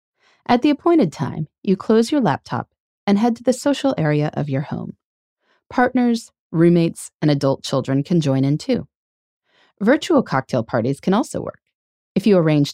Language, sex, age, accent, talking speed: English, female, 30-49, American, 165 wpm